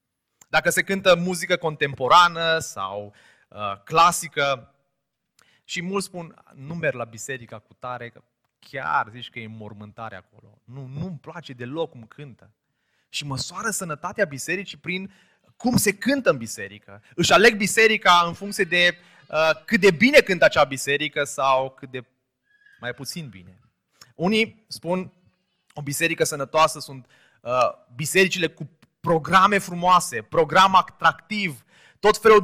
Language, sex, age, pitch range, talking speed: Romanian, male, 20-39, 135-190 Hz, 140 wpm